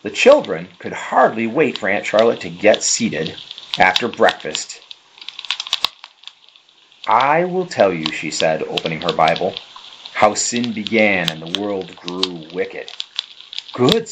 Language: English